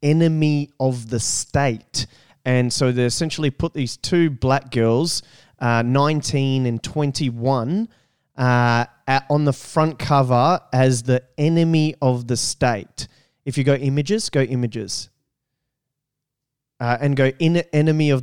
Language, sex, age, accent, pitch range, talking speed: English, male, 20-39, Australian, 120-150 Hz, 130 wpm